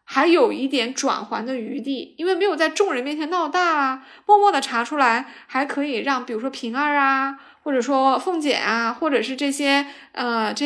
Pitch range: 235-310 Hz